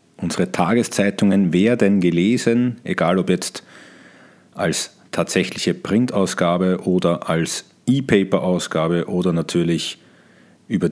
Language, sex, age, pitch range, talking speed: German, male, 40-59, 90-125 Hz, 90 wpm